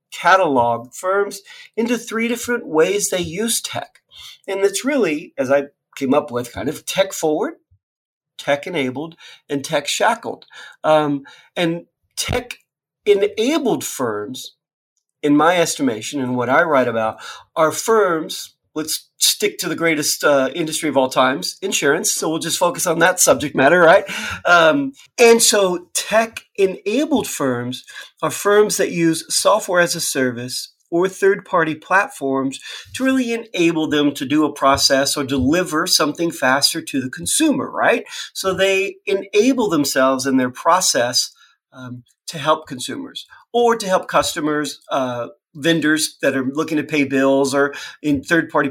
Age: 40-59